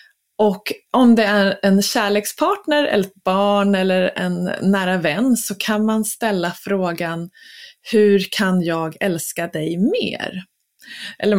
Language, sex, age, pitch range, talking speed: Swedish, female, 20-39, 175-225 Hz, 130 wpm